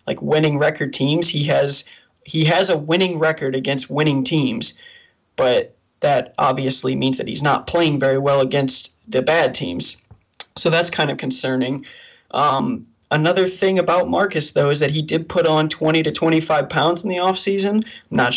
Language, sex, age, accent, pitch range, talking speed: English, male, 20-39, American, 140-170 Hz, 175 wpm